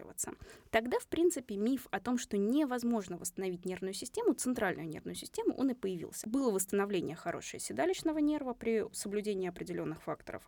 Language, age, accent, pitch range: Russian, 20-39, native, 205-300 Hz